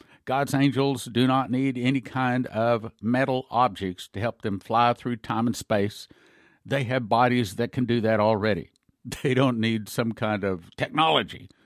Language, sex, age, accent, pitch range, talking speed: English, male, 60-79, American, 105-135 Hz, 170 wpm